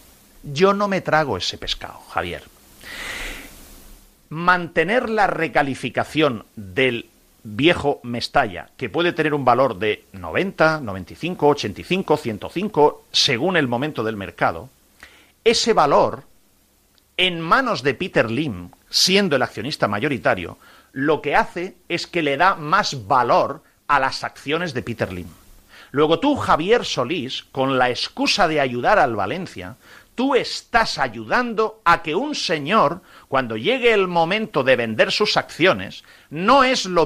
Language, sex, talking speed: Spanish, male, 135 wpm